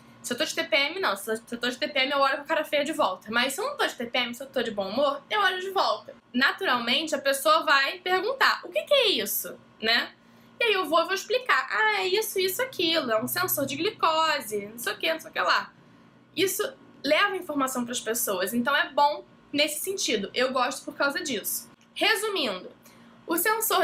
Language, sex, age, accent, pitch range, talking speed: Portuguese, female, 10-29, Brazilian, 265-335 Hz, 230 wpm